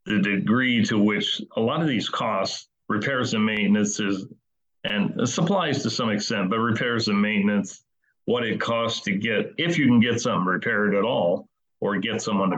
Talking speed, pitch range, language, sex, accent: 180 wpm, 100-110 Hz, English, male, American